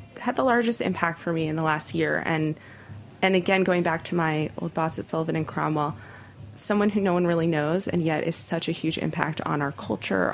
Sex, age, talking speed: female, 20-39, 225 wpm